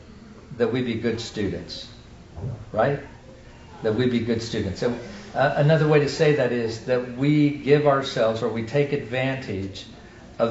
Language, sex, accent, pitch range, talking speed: English, male, American, 110-135 Hz, 160 wpm